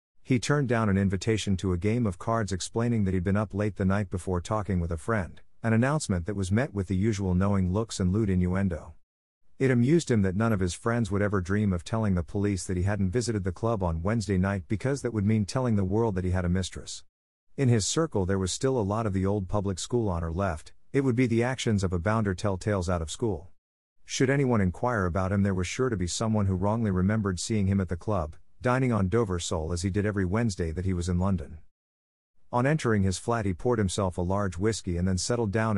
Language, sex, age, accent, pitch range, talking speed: English, male, 50-69, American, 90-115 Hz, 250 wpm